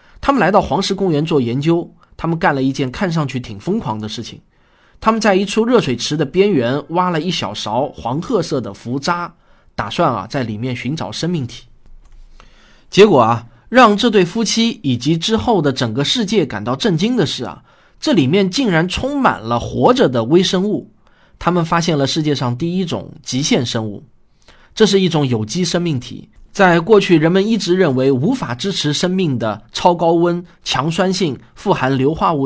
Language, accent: Chinese, native